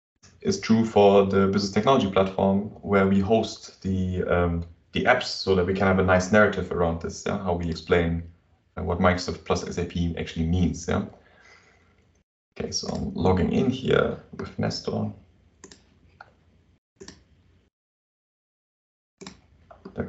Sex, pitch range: male, 85-100 Hz